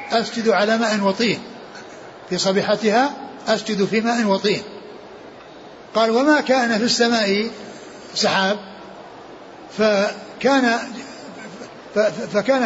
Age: 60-79